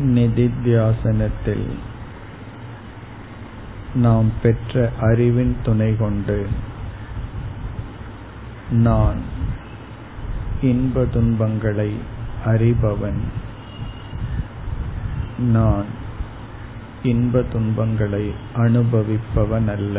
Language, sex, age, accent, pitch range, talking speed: Tamil, male, 50-69, native, 105-115 Hz, 40 wpm